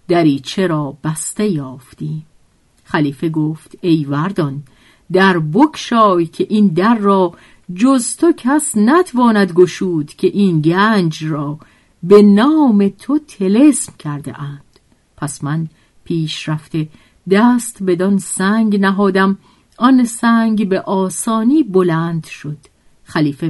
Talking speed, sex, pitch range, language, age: 110 wpm, female, 155-225 Hz, Persian, 50-69